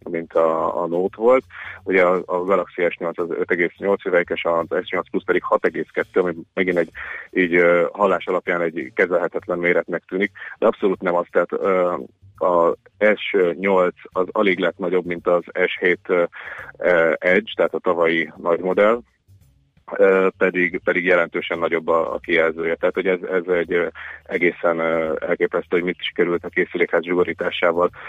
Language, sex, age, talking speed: Hungarian, male, 30-49, 145 wpm